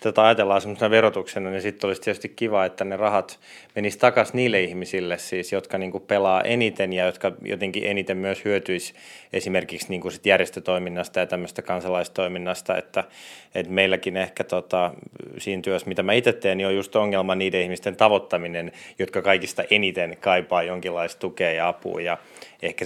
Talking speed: 165 wpm